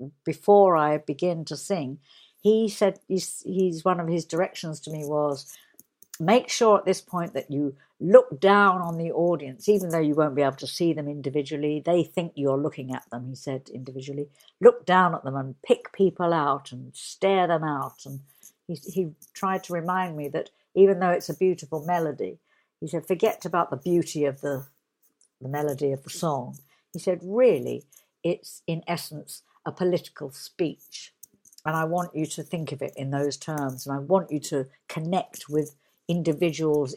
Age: 60-79